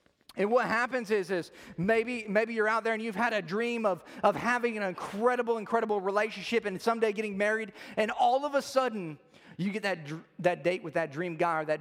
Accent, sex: American, male